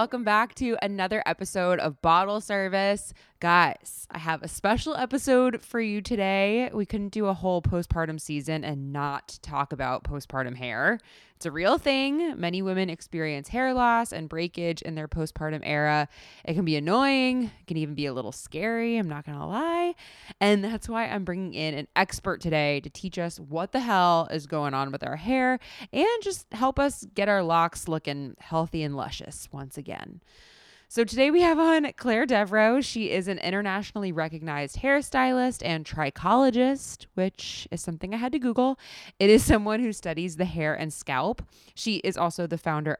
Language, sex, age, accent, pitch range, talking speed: English, female, 20-39, American, 155-225 Hz, 185 wpm